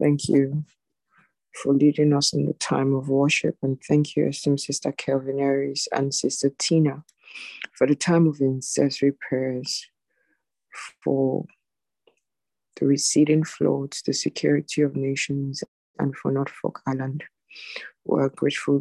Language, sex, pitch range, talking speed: English, female, 135-150 Hz, 130 wpm